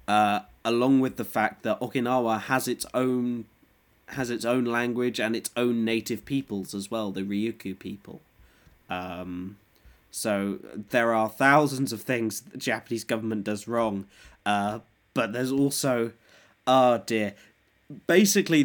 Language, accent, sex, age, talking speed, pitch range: English, British, male, 20-39, 140 wpm, 105-125 Hz